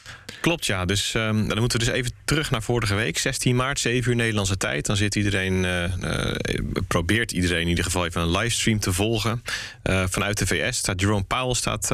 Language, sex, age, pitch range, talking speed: Dutch, male, 30-49, 95-120 Hz, 210 wpm